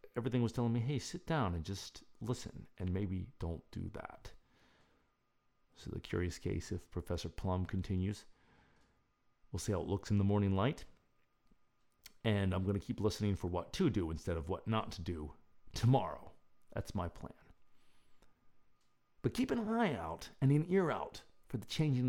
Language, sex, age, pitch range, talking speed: English, male, 40-59, 90-120 Hz, 175 wpm